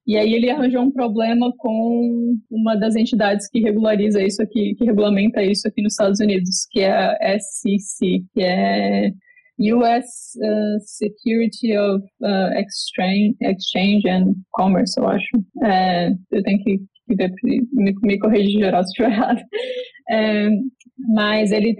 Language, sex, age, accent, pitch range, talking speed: Portuguese, female, 20-39, Brazilian, 205-235 Hz, 135 wpm